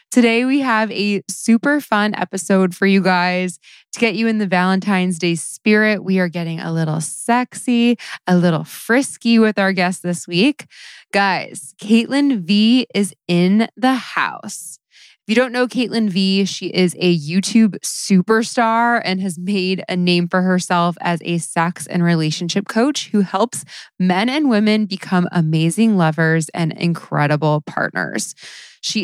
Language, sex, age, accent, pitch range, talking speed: English, female, 20-39, American, 170-215 Hz, 155 wpm